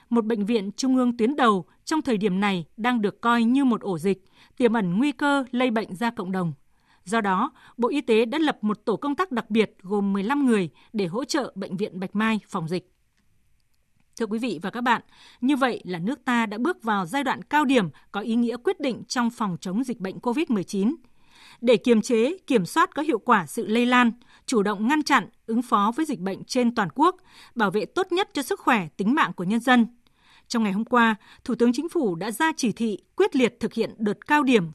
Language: Vietnamese